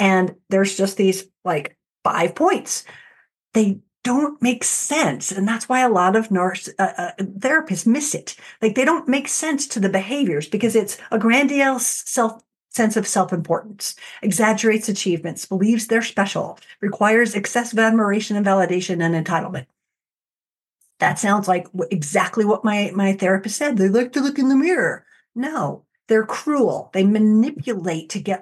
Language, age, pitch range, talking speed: English, 50-69, 185-235 Hz, 160 wpm